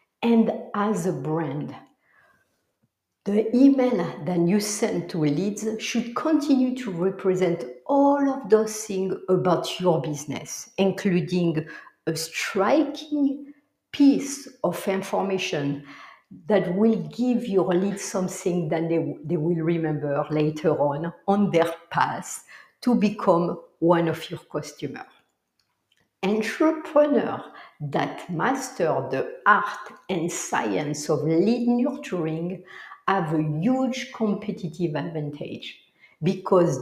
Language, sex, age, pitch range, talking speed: English, female, 60-79, 170-235 Hz, 110 wpm